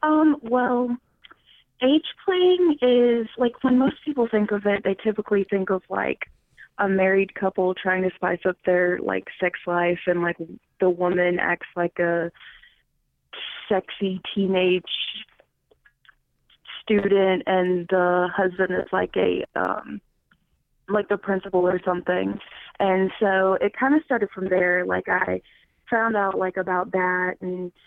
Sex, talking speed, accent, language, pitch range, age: female, 140 wpm, American, English, 180-205 Hz, 20-39